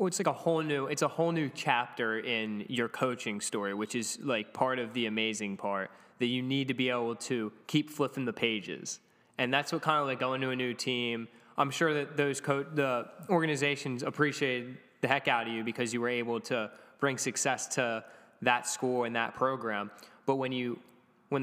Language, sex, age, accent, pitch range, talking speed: English, male, 10-29, American, 115-140 Hz, 210 wpm